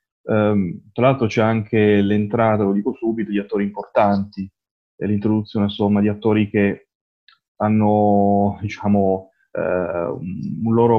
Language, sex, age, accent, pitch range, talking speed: Italian, male, 20-39, native, 100-120 Hz, 125 wpm